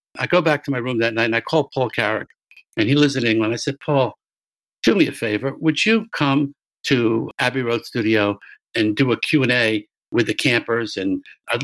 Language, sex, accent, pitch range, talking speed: English, male, American, 120-155 Hz, 210 wpm